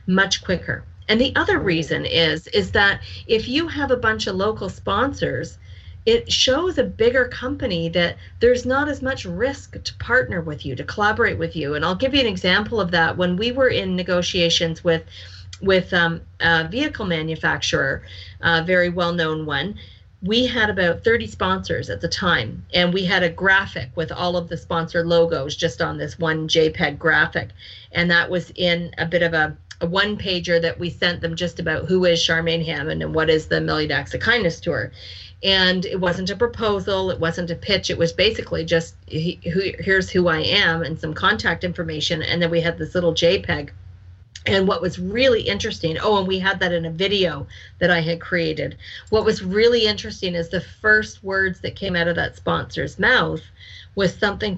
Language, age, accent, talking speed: English, 40-59, American, 195 wpm